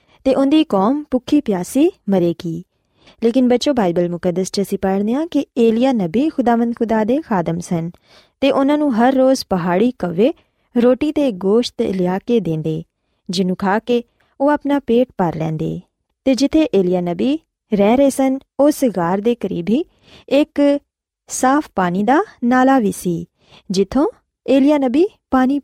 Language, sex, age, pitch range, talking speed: Punjabi, female, 20-39, 190-265 Hz, 150 wpm